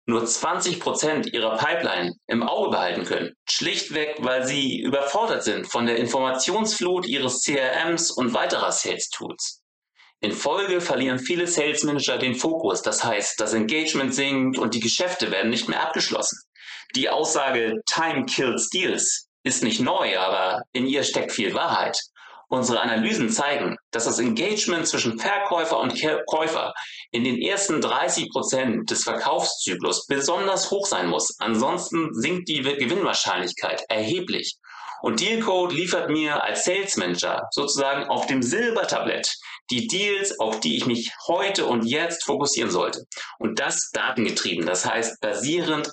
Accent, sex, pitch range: German, male, 115-165 Hz